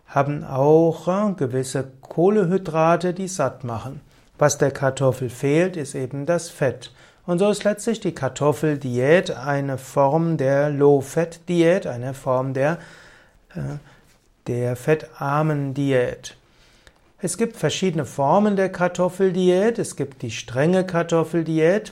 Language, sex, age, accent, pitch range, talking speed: German, male, 60-79, German, 135-175 Hz, 120 wpm